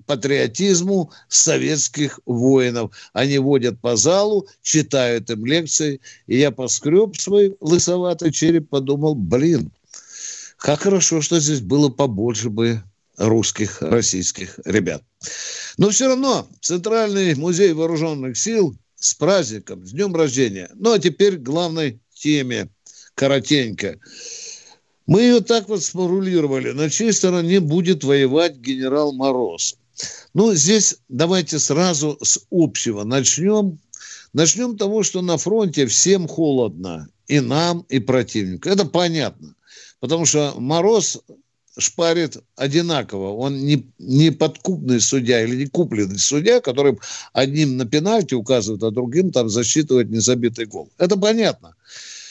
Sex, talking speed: male, 125 wpm